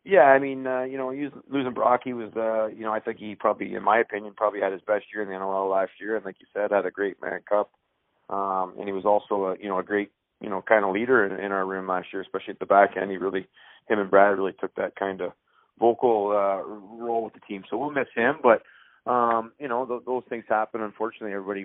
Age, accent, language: 30-49, American, English